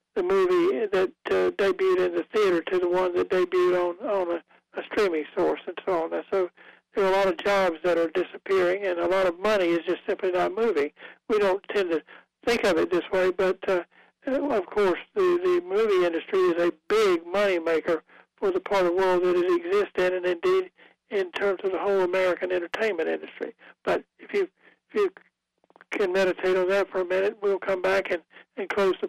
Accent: American